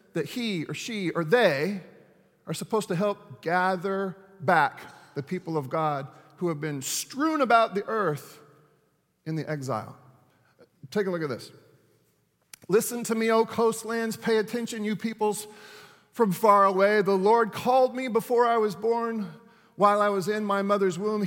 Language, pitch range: English, 160-220 Hz